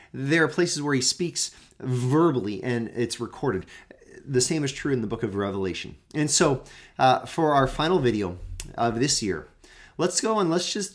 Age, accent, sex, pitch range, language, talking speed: 30-49, American, male, 115-175 Hz, English, 185 wpm